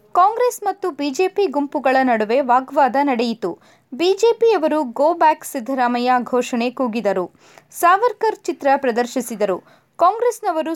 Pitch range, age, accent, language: 245-345 Hz, 20-39, native, Kannada